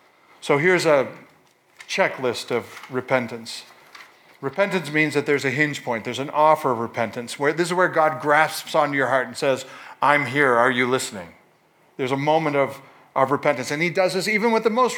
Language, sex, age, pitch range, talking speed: English, male, 40-59, 130-155 Hz, 190 wpm